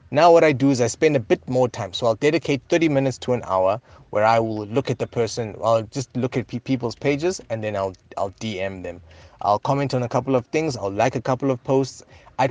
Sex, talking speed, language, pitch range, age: male, 255 wpm, English, 105-135 Hz, 20-39